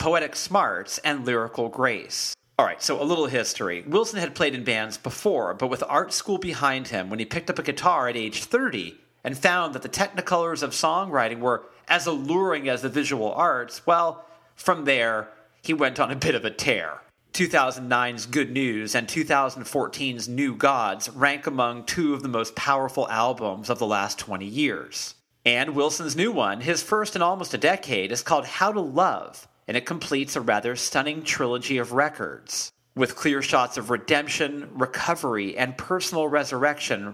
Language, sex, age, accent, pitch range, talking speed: English, male, 40-59, American, 125-155 Hz, 180 wpm